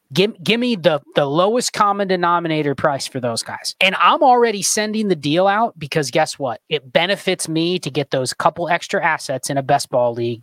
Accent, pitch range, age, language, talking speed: American, 145-200 Hz, 20-39, English, 205 wpm